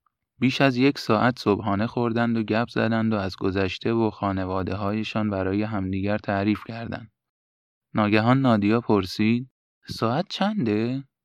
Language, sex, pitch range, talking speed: Persian, male, 100-125 Hz, 130 wpm